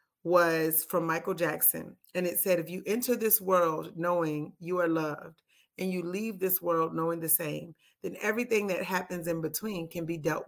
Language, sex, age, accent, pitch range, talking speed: English, female, 30-49, American, 165-200 Hz, 190 wpm